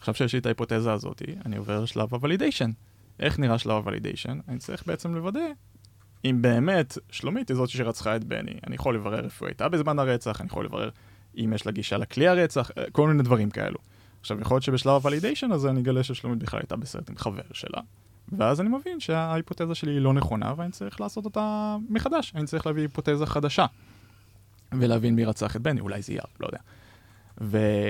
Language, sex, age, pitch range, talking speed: Hebrew, male, 20-39, 105-150 Hz, 175 wpm